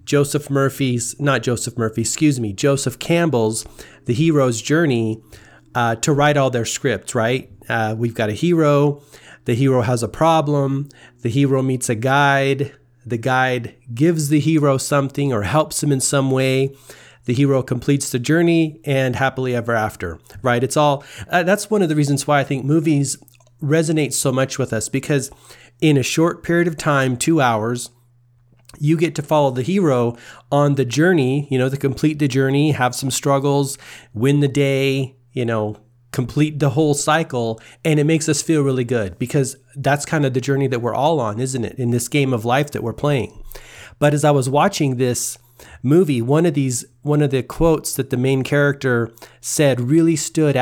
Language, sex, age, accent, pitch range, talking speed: English, male, 40-59, American, 120-150 Hz, 185 wpm